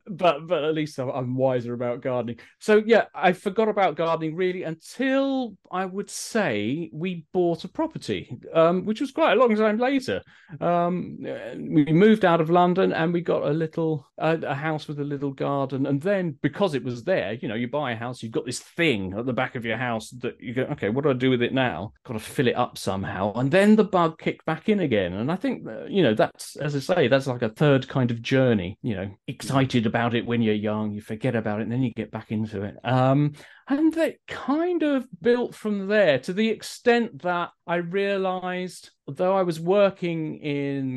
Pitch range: 115-180 Hz